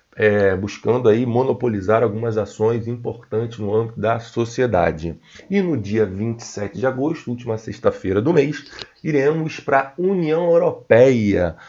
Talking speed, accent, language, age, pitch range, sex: 125 wpm, Brazilian, Portuguese, 40-59, 110-140 Hz, male